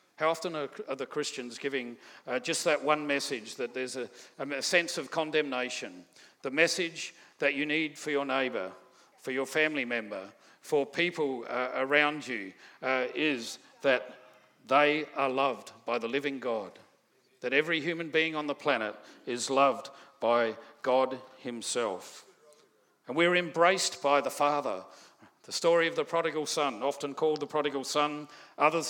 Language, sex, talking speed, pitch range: English, male, 155 wpm, 130-155 Hz